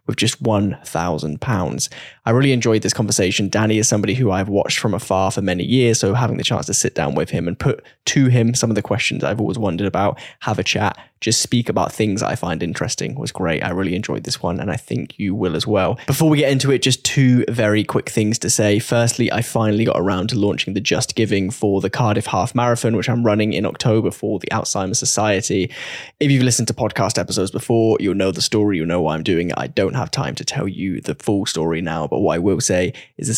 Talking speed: 245 wpm